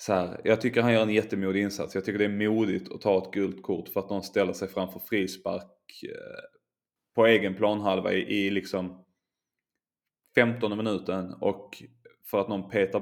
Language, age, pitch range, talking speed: Swedish, 20-39, 95-105 Hz, 180 wpm